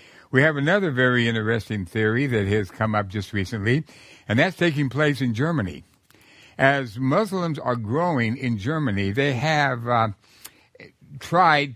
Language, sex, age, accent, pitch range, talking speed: English, male, 60-79, American, 115-155 Hz, 145 wpm